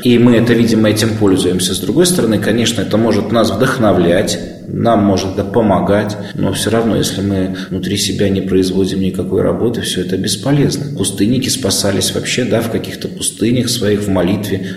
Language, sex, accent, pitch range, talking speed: Russian, male, native, 100-125 Hz, 170 wpm